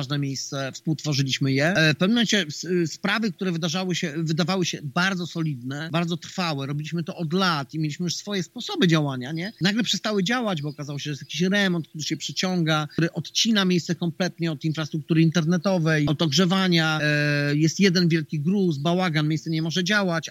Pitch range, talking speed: 160-205 Hz, 175 wpm